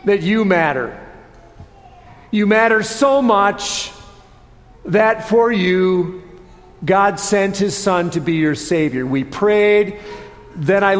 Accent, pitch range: American, 180-220 Hz